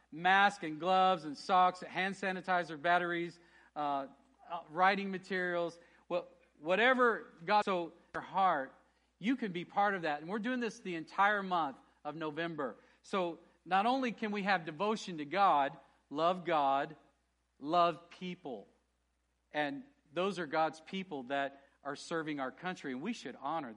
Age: 50-69